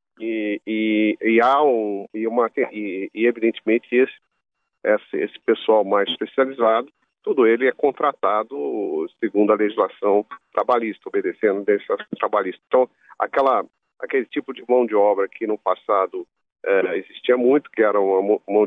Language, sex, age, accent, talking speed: Portuguese, male, 50-69, Brazilian, 145 wpm